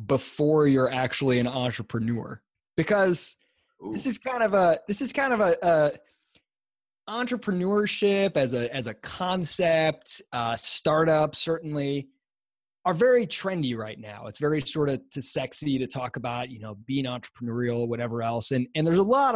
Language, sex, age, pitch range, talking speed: English, male, 20-39, 125-170 Hz, 160 wpm